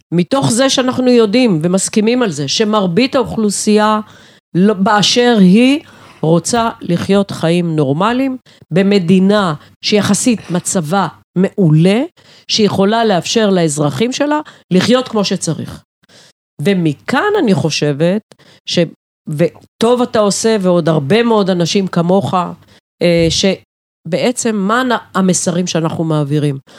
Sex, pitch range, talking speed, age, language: female, 170-230 Hz, 95 wpm, 40-59, Hebrew